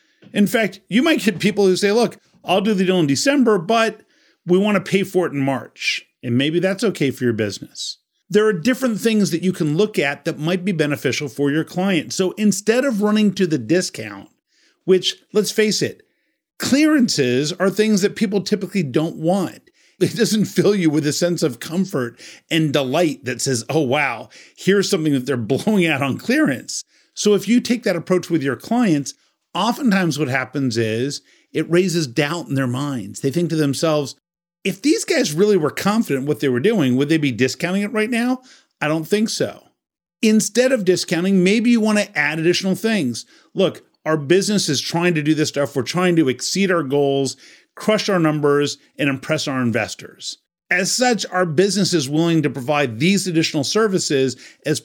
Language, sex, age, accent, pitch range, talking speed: English, male, 50-69, American, 145-205 Hz, 190 wpm